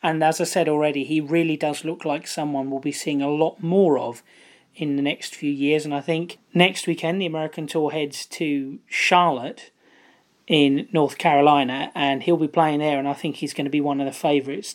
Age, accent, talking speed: 30-49, British, 215 wpm